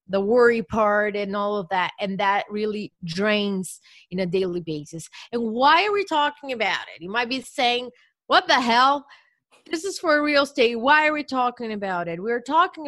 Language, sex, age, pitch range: English, female, 30-49, 190-240 Hz